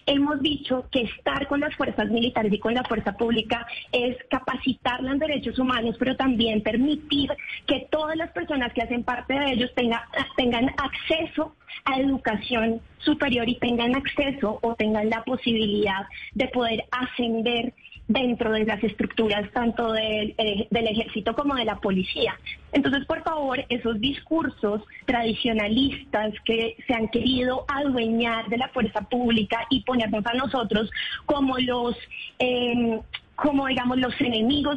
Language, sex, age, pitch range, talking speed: Spanish, female, 20-39, 225-265 Hz, 140 wpm